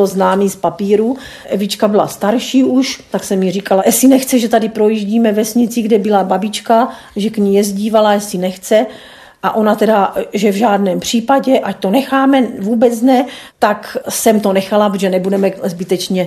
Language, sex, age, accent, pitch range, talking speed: Czech, female, 40-59, native, 195-235 Hz, 165 wpm